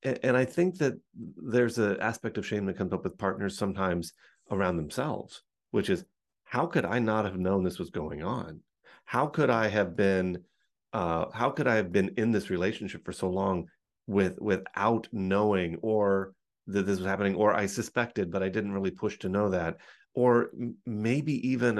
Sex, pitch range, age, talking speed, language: male, 90-110 Hz, 30-49, 185 wpm, English